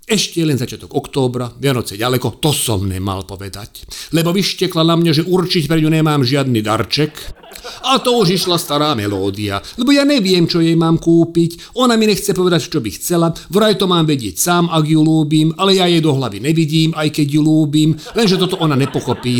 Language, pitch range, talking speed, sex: Slovak, 135-180 Hz, 195 wpm, male